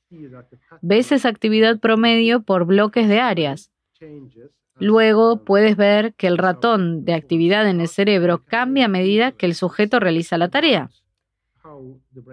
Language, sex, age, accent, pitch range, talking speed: Spanish, female, 20-39, Argentinian, 160-225 Hz, 135 wpm